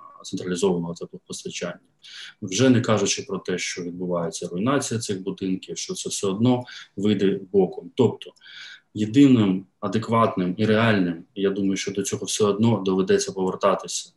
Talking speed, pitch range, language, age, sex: 140 wpm, 90-110 Hz, Ukrainian, 20-39, male